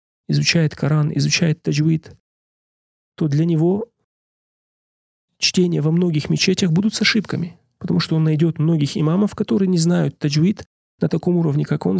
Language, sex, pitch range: Russian, male, 150-175 Hz